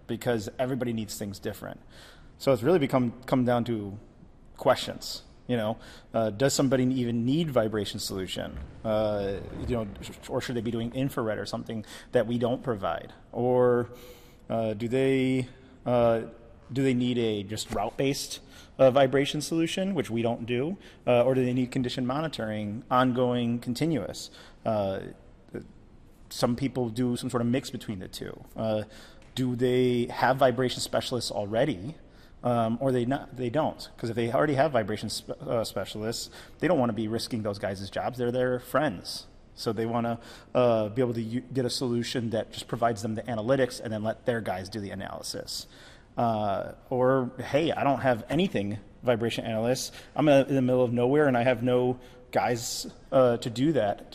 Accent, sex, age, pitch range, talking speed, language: American, male, 30-49, 115-130 Hz, 180 wpm, English